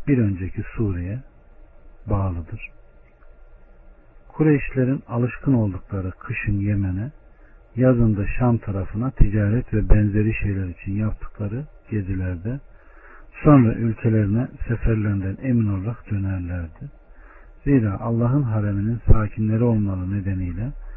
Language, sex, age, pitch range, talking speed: Turkish, male, 60-79, 95-120 Hz, 90 wpm